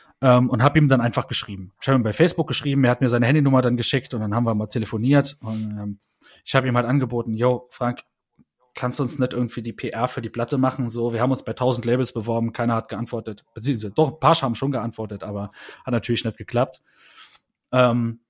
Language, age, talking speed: German, 30-49, 230 wpm